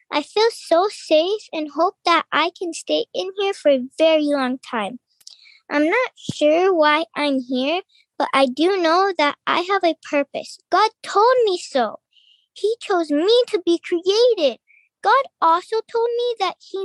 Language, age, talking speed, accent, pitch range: English, 10-29, 170 wpm, American, 305-400 Hz